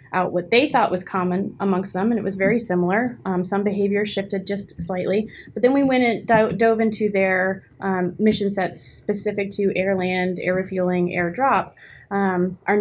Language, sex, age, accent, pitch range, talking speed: English, female, 20-39, American, 185-215 Hz, 185 wpm